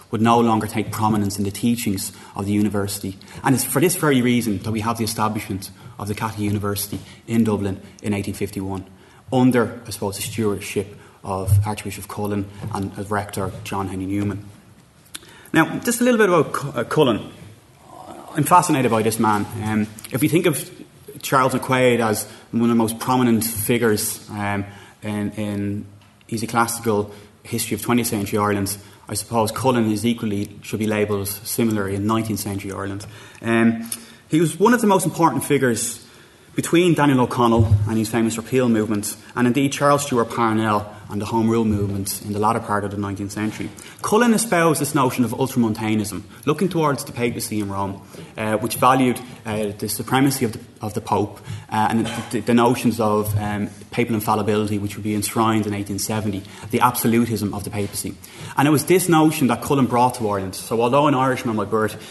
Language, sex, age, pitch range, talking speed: English, male, 20-39, 105-120 Hz, 180 wpm